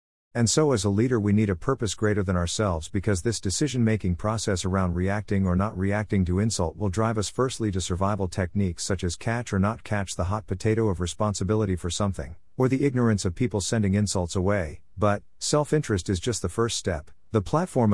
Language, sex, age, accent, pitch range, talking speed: English, male, 50-69, American, 90-110 Hz, 200 wpm